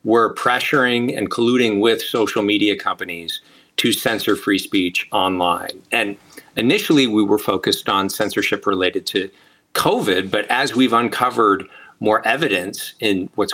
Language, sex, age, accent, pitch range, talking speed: English, male, 40-59, American, 95-115 Hz, 140 wpm